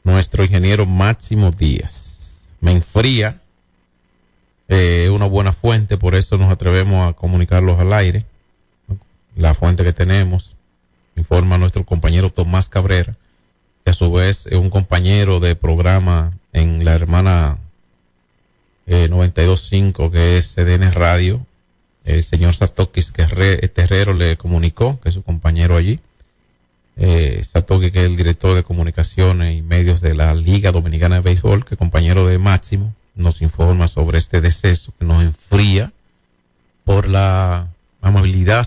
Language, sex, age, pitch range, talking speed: Spanish, male, 40-59, 85-100 Hz, 145 wpm